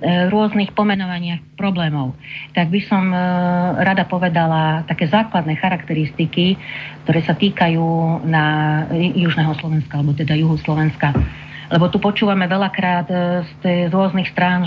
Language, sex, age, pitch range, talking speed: Slovak, female, 40-59, 150-180 Hz, 120 wpm